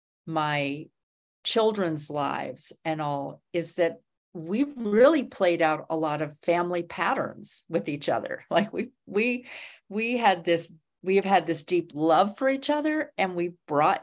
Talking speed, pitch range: 160 wpm, 160-210 Hz